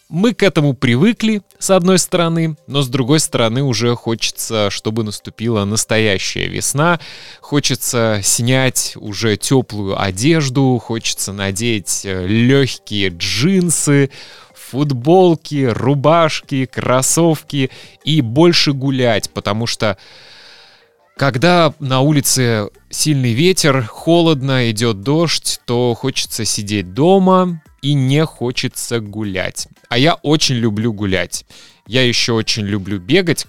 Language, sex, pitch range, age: Russian, male, 105-145 Hz, 20-39